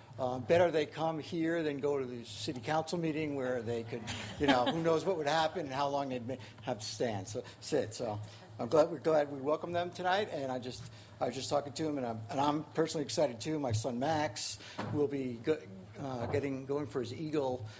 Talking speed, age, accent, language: 230 wpm, 60-79, American, English